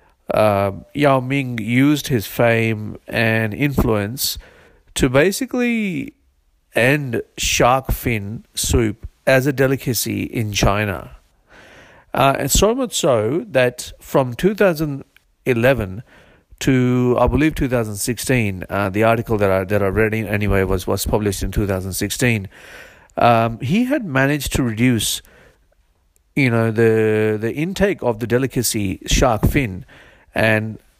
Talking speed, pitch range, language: 130 wpm, 110-150 Hz, English